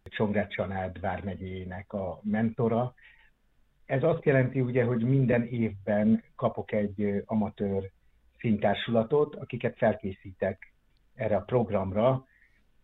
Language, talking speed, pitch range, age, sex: Hungarian, 95 wpm, 100-120 Hz, 60-79, male